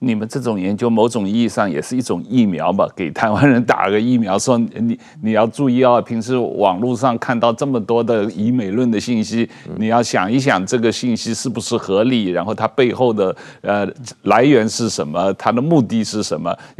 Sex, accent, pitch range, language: male, native, 110-130 Hz, Chinese